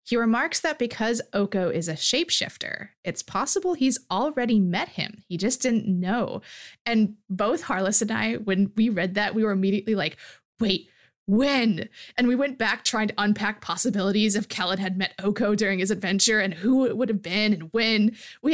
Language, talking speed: English, 190 wpm